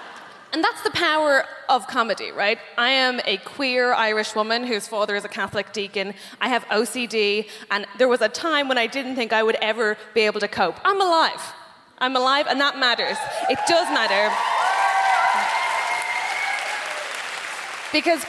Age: 20-39